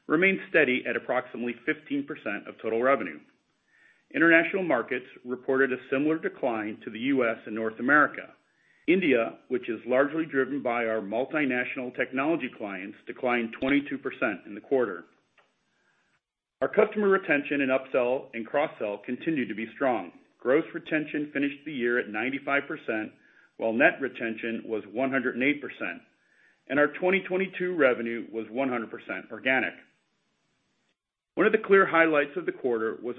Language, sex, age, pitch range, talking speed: English, male, 40-59, 120-165 Hz, 135 wpm